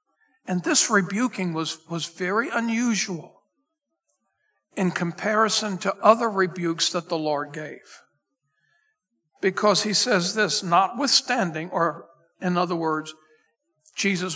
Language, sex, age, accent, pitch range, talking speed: English, male, 60-79, American, 175-230 Hz, 110 wpm